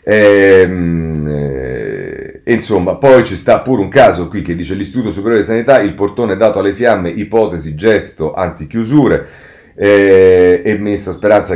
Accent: native